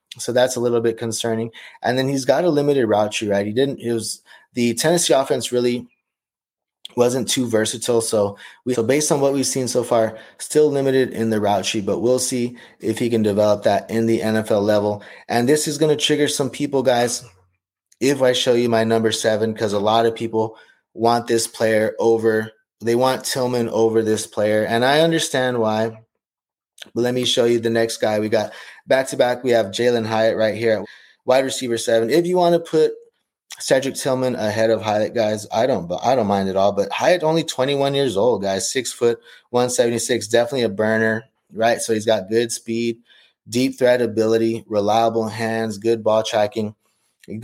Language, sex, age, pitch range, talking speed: English, male, 20-39, 110-125 Hz, 200 wpm